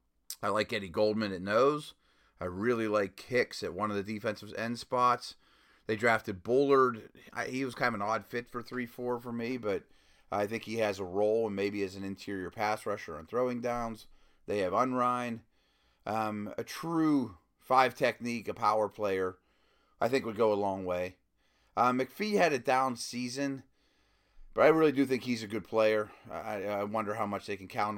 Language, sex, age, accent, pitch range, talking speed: English, male, 30-49, American, 105-125 Hz, 190 wpm